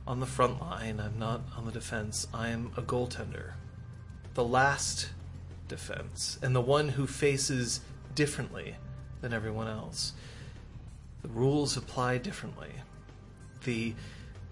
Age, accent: 30-49, American